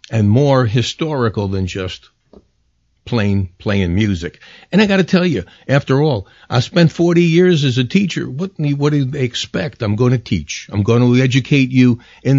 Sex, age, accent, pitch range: male, 50-69, American, 100-135 Hz